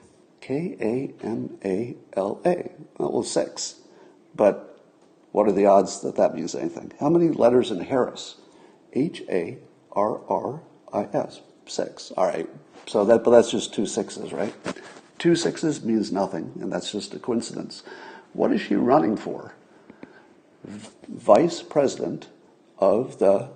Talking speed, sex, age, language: 145 wpm, male, 50-69, English